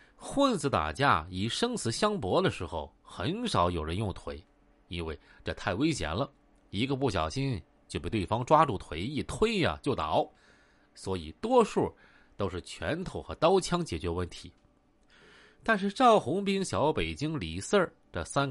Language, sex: Chinese, male